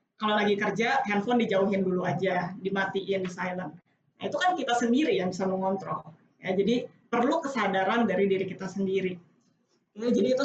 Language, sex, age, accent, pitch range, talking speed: Indonesian, female, 20-39, native, 200-240 Hz, 160 wpm